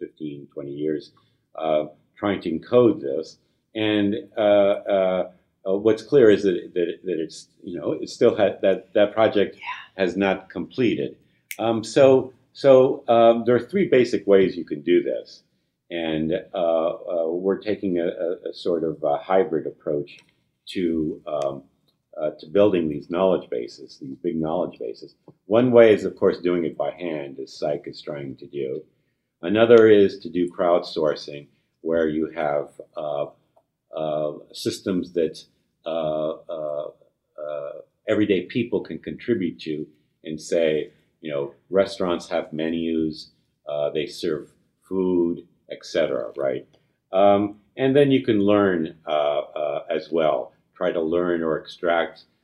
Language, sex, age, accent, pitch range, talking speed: English, male, 50-69, American, 75-110 Hz, 150 wpm